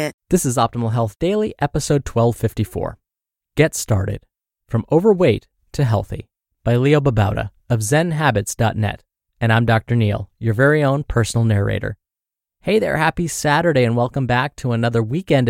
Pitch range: 110-155 Hz